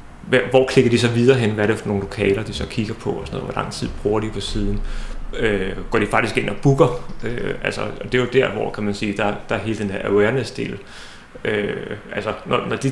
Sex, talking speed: male, 225 wpm